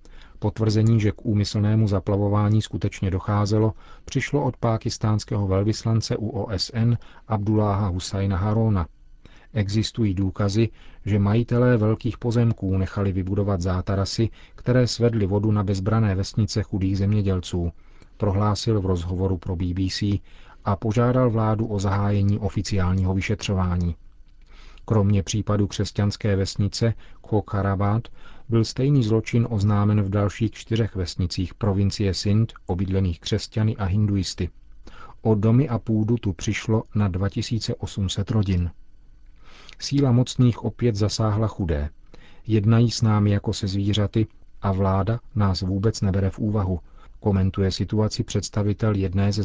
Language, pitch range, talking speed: Czech, 95-110 Hz, 115 wpm